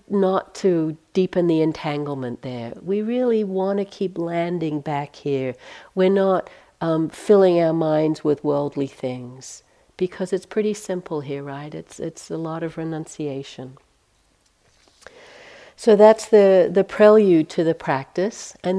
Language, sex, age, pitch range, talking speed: English, female, 60-79, 155-205 Hz, 140 wpm